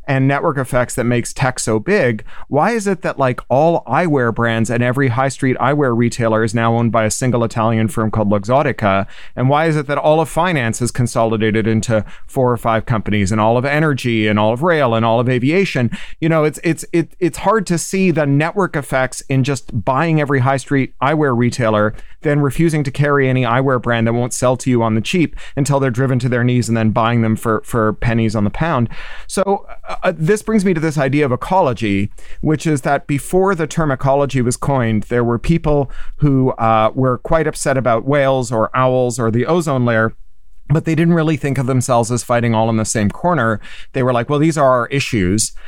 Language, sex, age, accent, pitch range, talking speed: English, male, 30-49, American, 115-150 Hz, 220 wpm